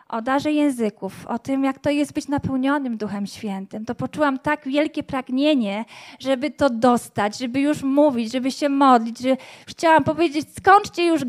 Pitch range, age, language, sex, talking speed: 220-275 Hz, 20-39, Polish, female, 165 wpm